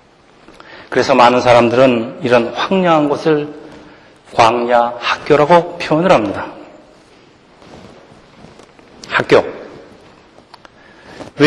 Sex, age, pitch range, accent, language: male, 40-59, 130-170 Hz, native, Korean